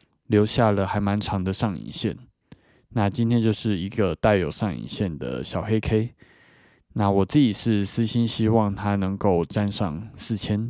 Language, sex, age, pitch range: Chinese, male, 20-39, 100-120 Hz